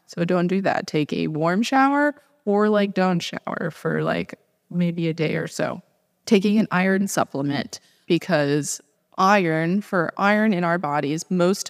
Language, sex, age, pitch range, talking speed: English, female, 20-39, 150-180 Hz, 160 wpm